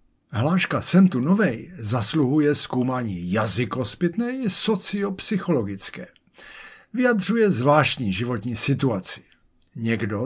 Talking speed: 90 wpm